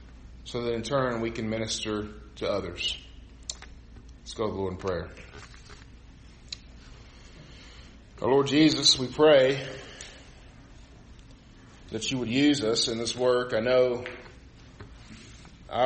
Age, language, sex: 40-59, English, male